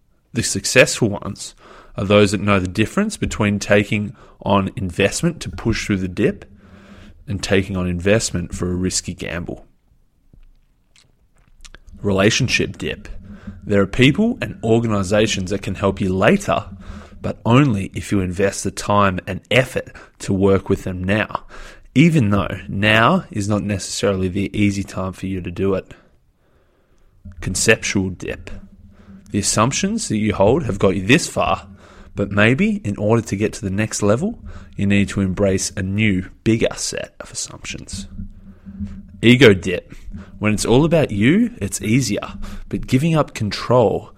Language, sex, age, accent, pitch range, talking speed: English, male, 20-39, Australian, 95-105 Hz, 150 wpm